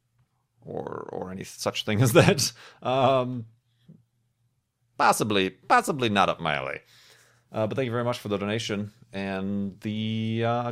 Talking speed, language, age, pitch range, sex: 145 wpm, English, 40-59, 105-140 Hz, male